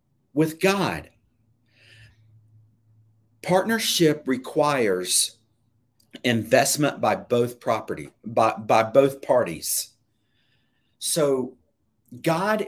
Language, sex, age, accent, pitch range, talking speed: English, male, 50-69, American, 115-150 Hz, 65 wpm